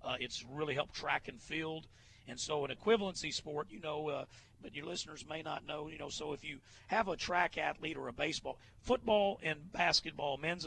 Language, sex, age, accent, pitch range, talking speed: English, male, 40-59, American, 130-160 Hz, 210 wpm